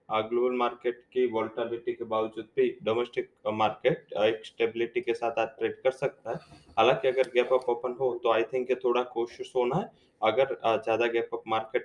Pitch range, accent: 120-145 Hz, Indian